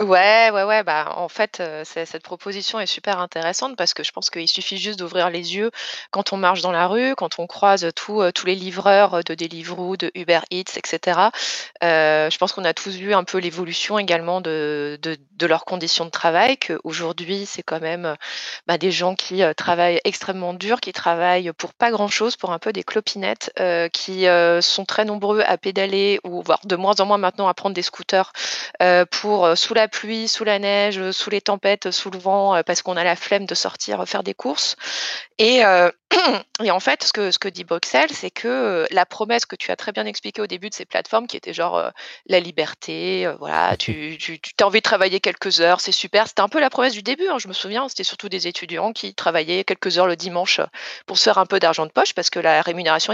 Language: French